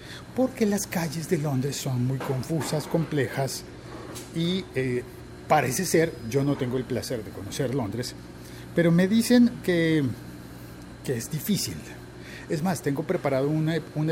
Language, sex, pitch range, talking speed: Spanish, male, 120-155 Hz, 145 wpm